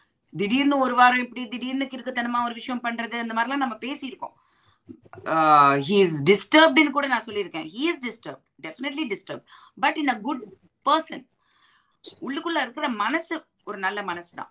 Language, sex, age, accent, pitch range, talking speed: English, female, 20-39, Indian, 205-280 Hz, 60 wpm